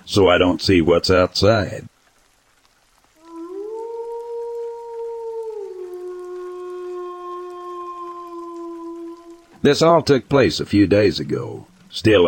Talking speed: 75 wpm